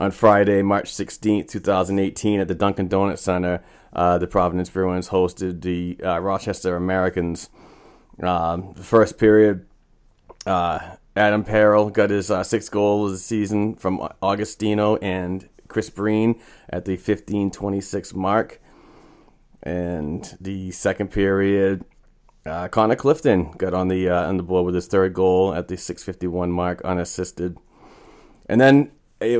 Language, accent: English, American